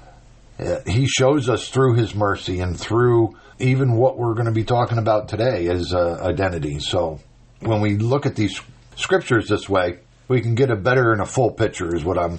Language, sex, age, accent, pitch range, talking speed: English, male, 50-69, American, 100-125 Hz, 200 wpm